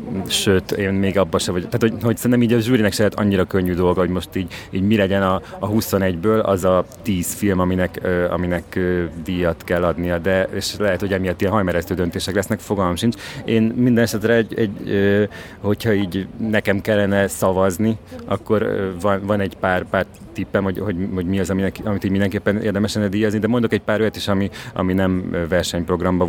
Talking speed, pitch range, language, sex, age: 205 wpm, 90-105 Hz, Hungarian, male, 30-49